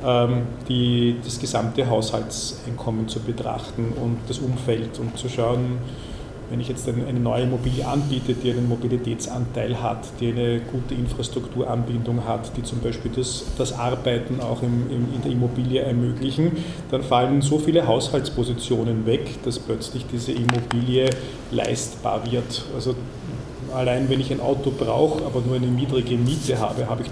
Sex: male